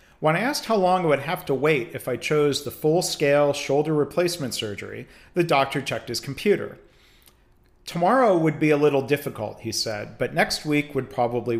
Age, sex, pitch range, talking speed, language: 40-59, male, 125-160 Hz, 185 wpm, English